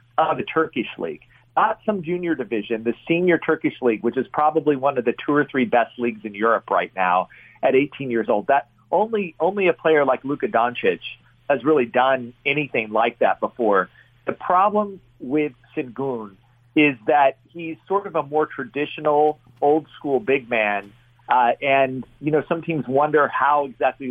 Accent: American